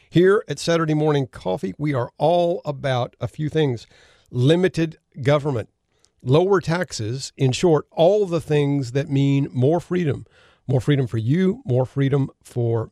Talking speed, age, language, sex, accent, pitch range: 150 wpm, 50-69, English, male, American, 120-150 Hz